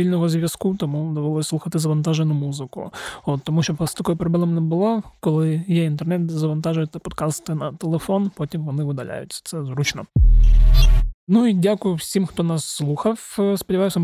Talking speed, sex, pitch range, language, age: 155 wpm, male, 155-180 Hz, Ukrainian, 30-49